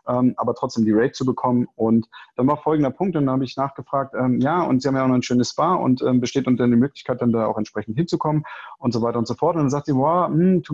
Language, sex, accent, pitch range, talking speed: German, male, German, 125-150 Hz, 275 wpm